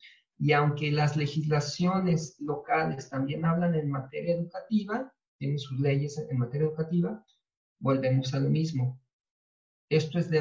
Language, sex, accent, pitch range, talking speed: Spanish, male, Mexican, 130-175 Hz, 135 wpm